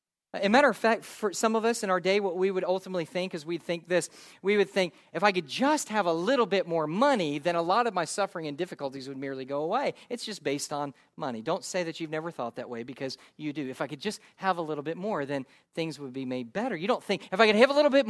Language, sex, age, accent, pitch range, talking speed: English, male, 40-59, American, 145-195 Hz, 285 wpm